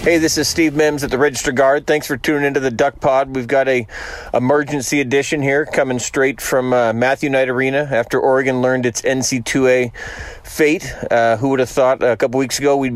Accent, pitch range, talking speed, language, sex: American, 125-140 Hz, 210 wpm, English, male